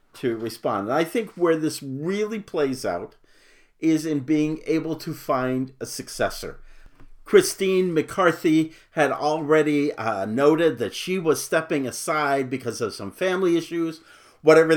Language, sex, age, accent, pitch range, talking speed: English, male, 50-69, American, 130-185 Hz, 140 wpm